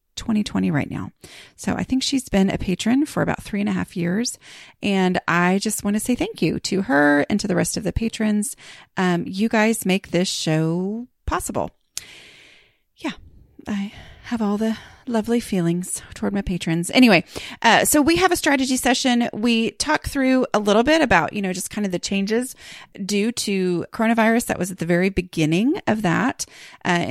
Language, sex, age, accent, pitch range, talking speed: English, female, 30-49, American, 175-230 Hz, 190 wpm